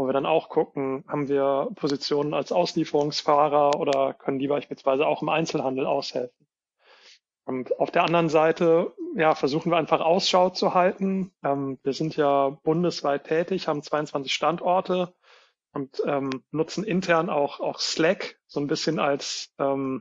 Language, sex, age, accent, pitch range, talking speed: German, male, 30-49, German, 145-165 Hz, 145 wpm